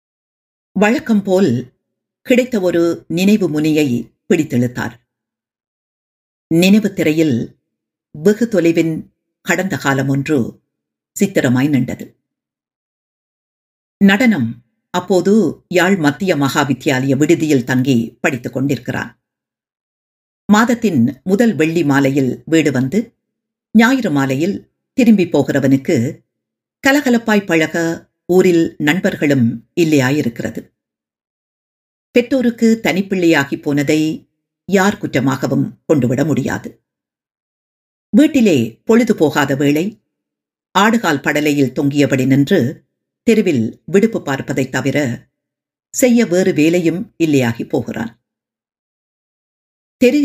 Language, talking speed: Tamil, 80 wpm